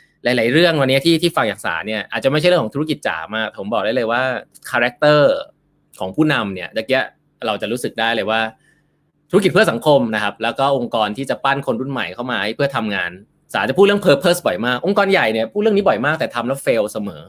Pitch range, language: 110-145 Hz, Thai